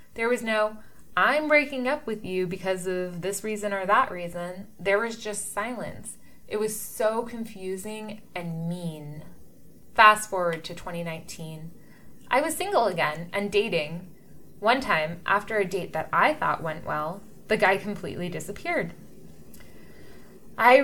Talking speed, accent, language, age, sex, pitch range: 145 wpm, American, English, 20-39, female, 175-230 Hz